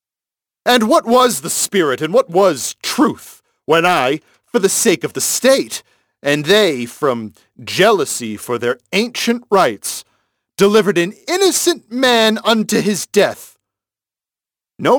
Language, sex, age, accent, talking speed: English, male, 40-59, American, 130 wpm